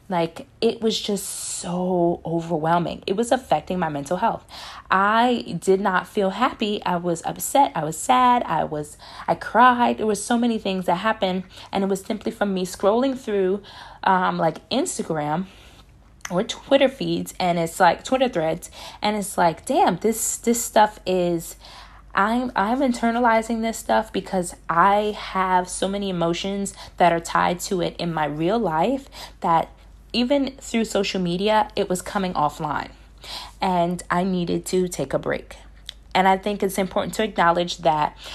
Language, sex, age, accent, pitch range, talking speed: English, female, 20-39, American, 175-220 Hz, 165 wpm